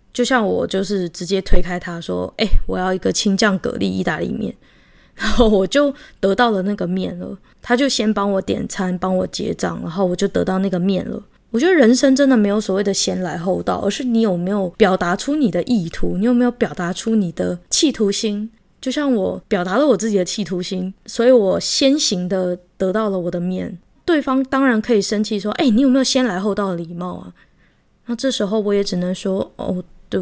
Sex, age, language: female, 20-39, Chinese